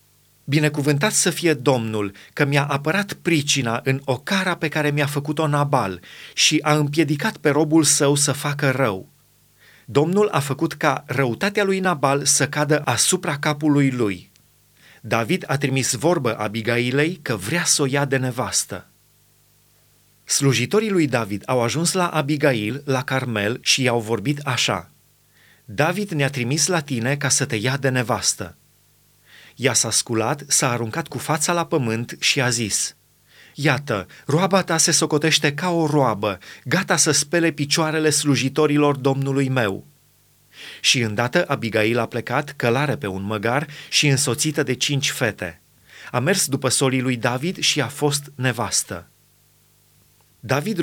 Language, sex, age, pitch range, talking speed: Romanian, male, 30-49, 125-155 Hz, 150 wpm